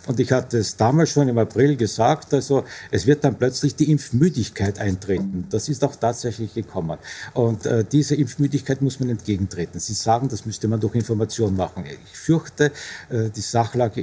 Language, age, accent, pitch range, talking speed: German, 50-69, Austrian, 110-145 Hz, 180 wpm